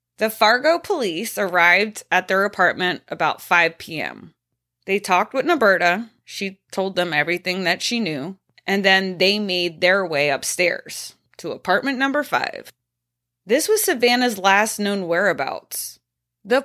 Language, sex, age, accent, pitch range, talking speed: English, female, 20-39, American, 175-245 Hz, 140 wpm